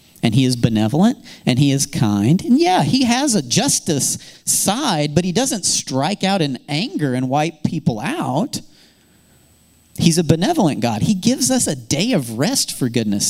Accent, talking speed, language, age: American, 175 wpm, English, 40-59